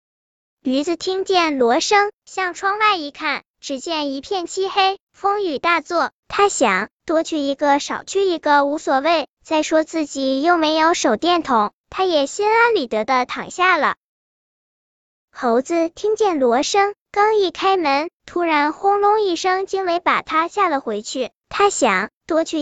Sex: male